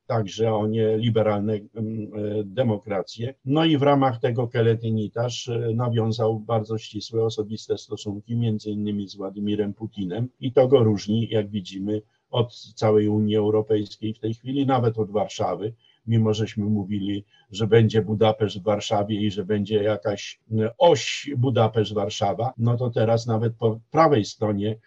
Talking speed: 140 wpm